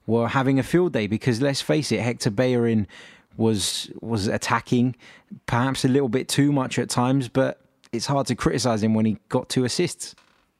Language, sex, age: English, male, 20-39